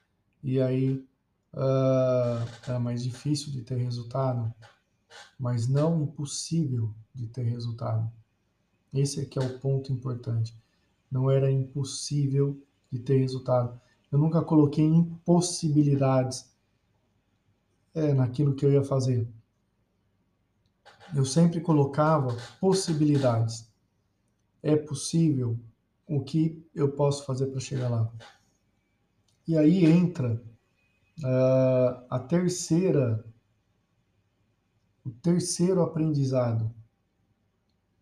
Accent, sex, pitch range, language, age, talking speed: Brazilian, male, 110-140 Hz, Portuguese, 20-39, 90 wpm